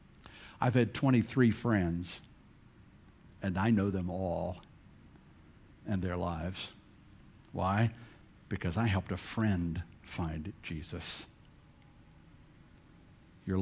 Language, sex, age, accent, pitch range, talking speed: English, male, 60-79, American, 120-195 Hz, 95 wpm